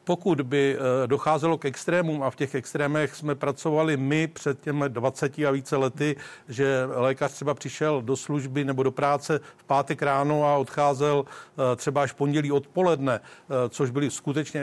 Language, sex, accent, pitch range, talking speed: Czech, male, native, 130-145 Hz, 165 wpm